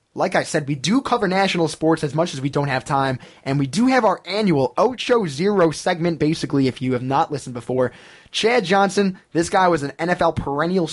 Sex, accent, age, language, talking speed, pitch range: male, American, 20-39, English, 215 wpm, 135-180 Hz